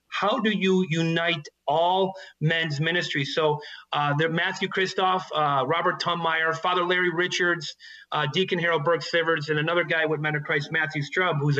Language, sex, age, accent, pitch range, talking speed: English, male, 30-49, American, 155-190 Hz, 170 wpm